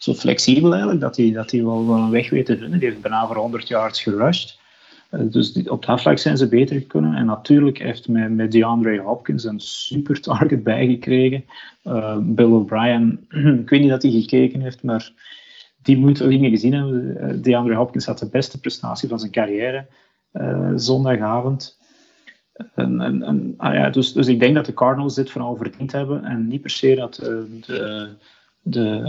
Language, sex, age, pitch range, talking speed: Dutch, male, 30-49, 115-130 Hz, 190 wpm